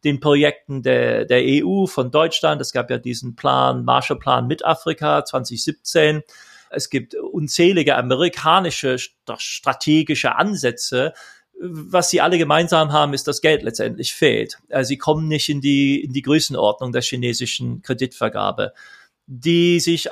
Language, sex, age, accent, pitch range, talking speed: German, male, 40-59, German, 130-175 Hz, 135 wpm